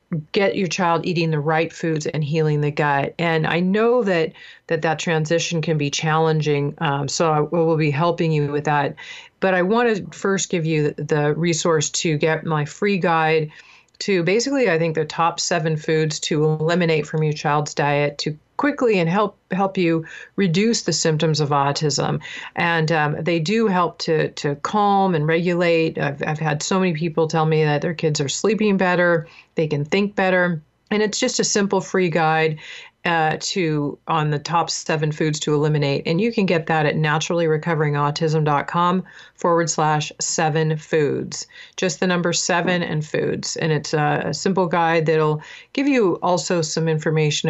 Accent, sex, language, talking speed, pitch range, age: American, female, English, 175 wpm, 150-180 Hz, 40-59